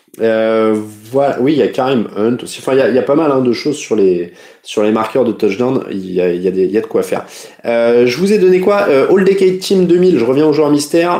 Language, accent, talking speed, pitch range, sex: French, French, 265 wpm, 120-175 Hz, male